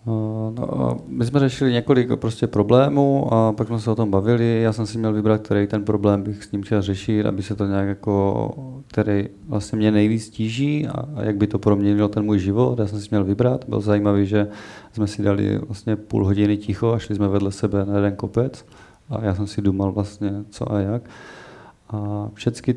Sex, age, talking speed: male, 30-49, 210 wpm